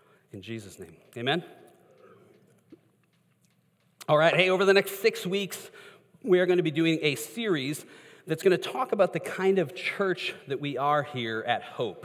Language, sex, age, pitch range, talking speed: English, male, 40-59, 135-190 Hz, 175 wpm